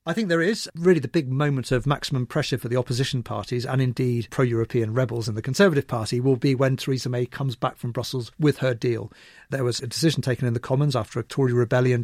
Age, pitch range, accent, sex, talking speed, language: 40-59, 120-140 Hz, British, male, 235 wpm, English